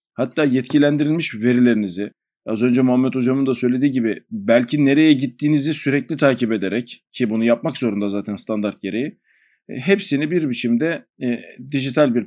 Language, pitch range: Turkish, 120-140 Hz